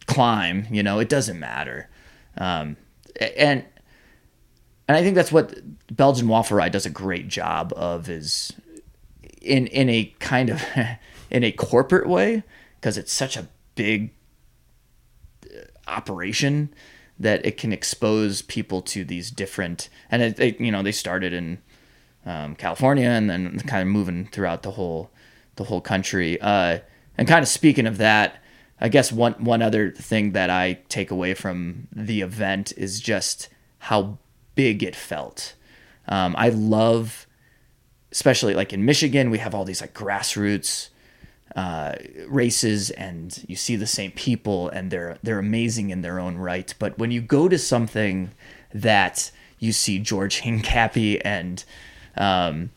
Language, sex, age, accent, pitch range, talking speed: English, male, 20-39, American, 95-125 Hz, 150 wpm